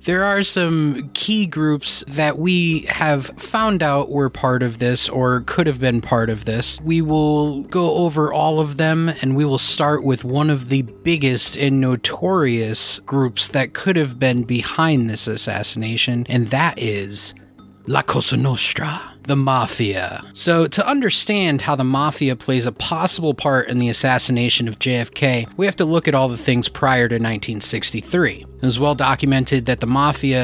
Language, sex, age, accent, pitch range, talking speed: English, male, 20-39, American, 120-155 Hz, 175 wpm